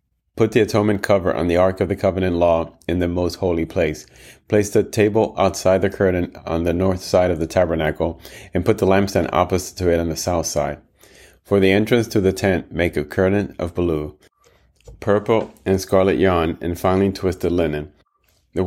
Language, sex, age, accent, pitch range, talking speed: English, male, 30-49, American, 80-95 Hz, 195 wpm